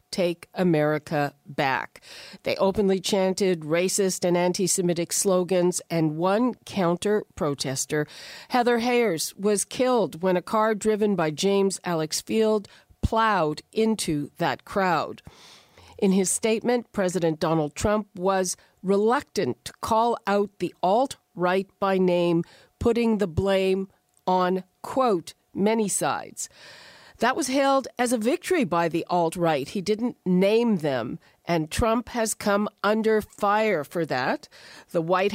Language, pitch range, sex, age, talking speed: English, 175-215 Hz, female, 50-69, 130 wpm